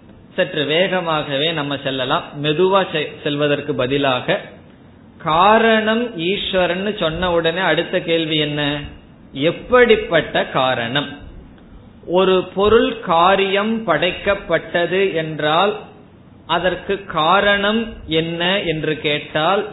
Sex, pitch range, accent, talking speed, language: male, 150-195 Hz, native, 75 wpm, Tamil